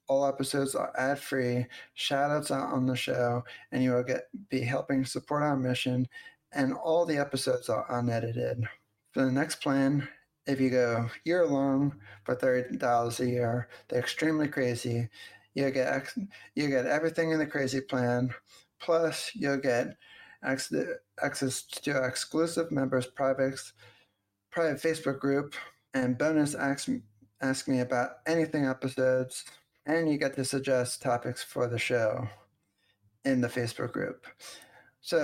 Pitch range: 120-145 Hz